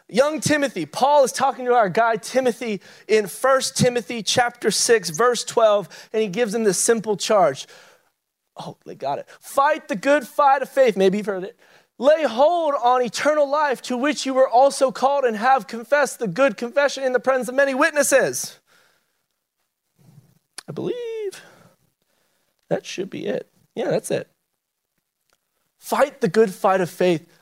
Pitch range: 150-245 Hz